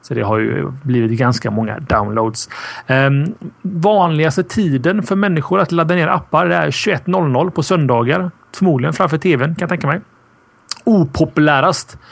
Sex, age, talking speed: male, 30-49, 145 wpm